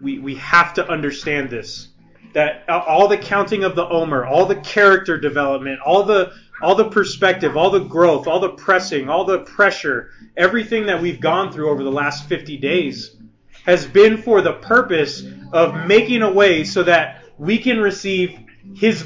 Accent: American